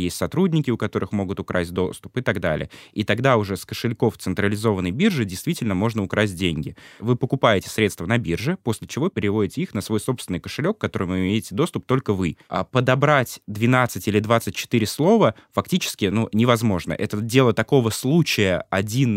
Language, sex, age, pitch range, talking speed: Russian, male, 20-39, 95-115 Hz, 165 wpm